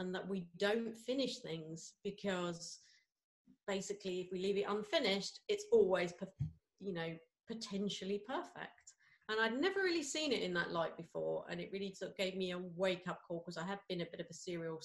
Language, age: English, 30-49